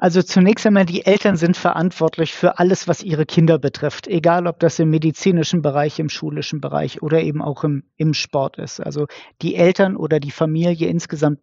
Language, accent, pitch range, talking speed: German, German, 145-170 Hz, 190 wpm